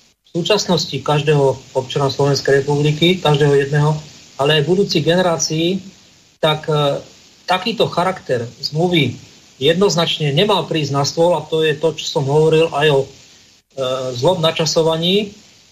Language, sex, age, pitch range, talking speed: Slovak, male, 40-59, 150-185 Hz, 135 wpm